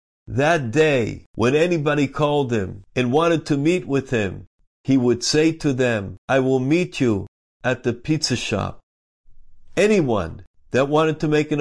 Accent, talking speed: American, 160 wpm